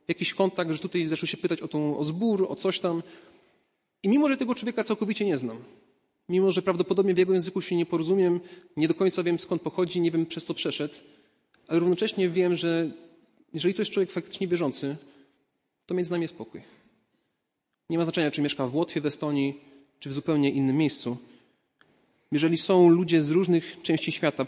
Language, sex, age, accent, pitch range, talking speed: Polish, male, 30-49, native, 140-175 Hz, 190 wpm